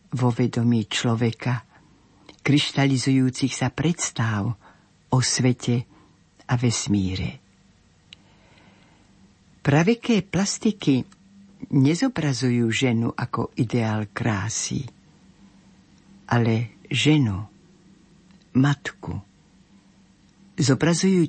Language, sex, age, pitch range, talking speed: Slovak, female, 60-79, 120-160 Hz, 60 wpm